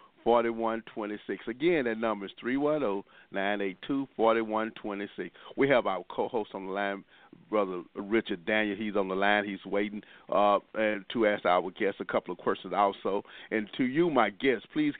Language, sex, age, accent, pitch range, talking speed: English, male, 50-69, American, 100-120 Hz, 155 wpm